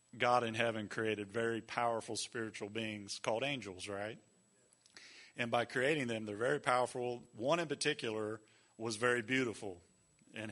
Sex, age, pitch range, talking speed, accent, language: male, 40-59, 110-130 Hz, 145 wpm, American, English